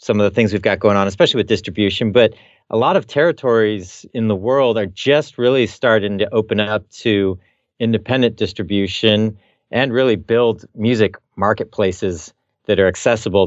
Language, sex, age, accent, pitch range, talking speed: English, male, 40-59, American, 100-115 Hz, 165 wpm